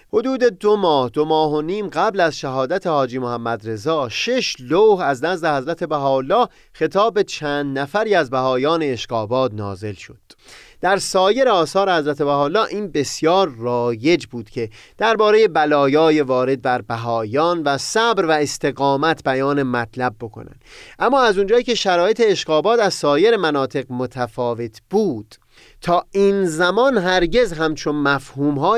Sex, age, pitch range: male, 30-49, 130-185 Hz